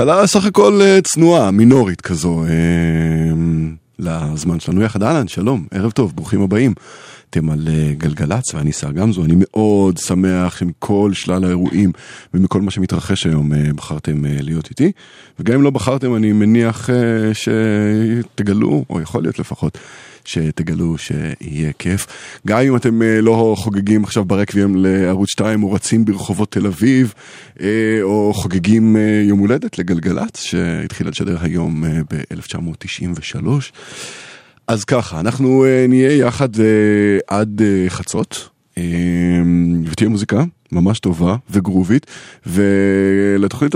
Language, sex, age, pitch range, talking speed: Hebrew, male, 20-39, 85-115 Hz, 115 wpm